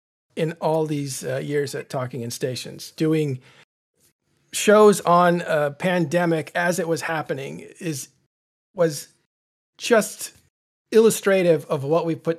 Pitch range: 140-175 Hz